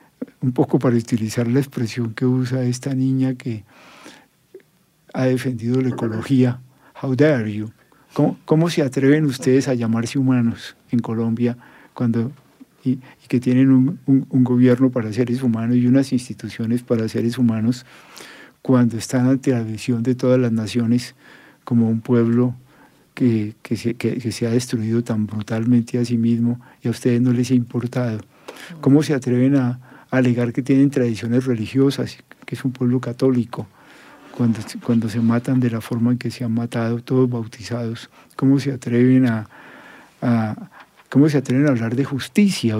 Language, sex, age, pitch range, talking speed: English, male, 50-69, 115-135 Hz, 165 wpm